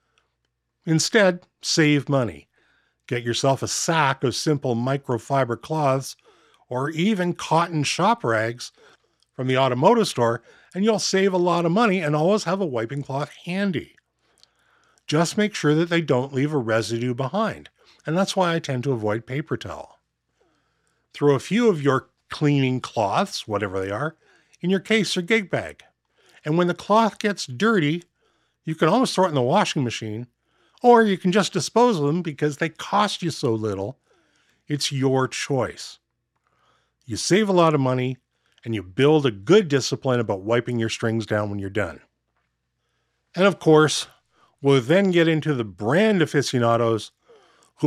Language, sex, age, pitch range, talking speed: English, male, 50-69, 125-180 Hz, 165 wpm